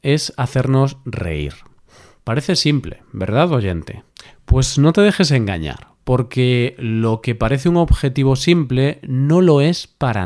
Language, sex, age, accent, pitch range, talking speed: Spanish, male, 40-59, Spanish, 115-150 Hz, 135 wpm